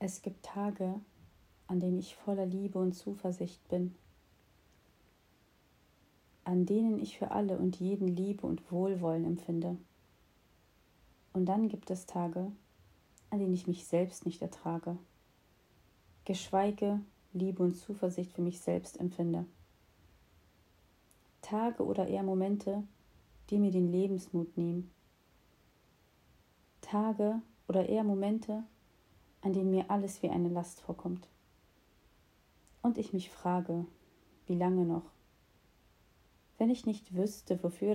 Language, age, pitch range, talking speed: German, 40-59, 170-195 Hz, 120 wpm